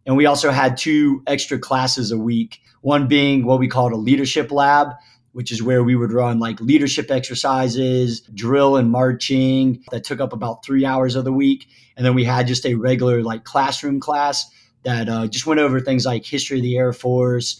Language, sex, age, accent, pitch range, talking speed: English, male, 30-49, American, 120-140 Hz, 205 wpm